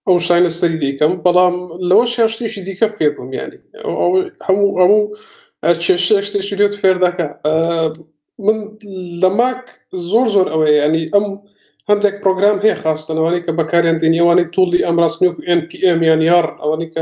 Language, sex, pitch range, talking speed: Arabic, male, 165-205 Hz, 90 wpm